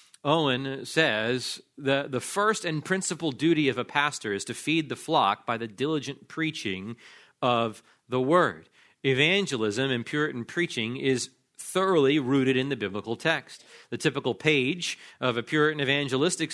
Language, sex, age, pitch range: English, male, 40-59, 120-145 Hz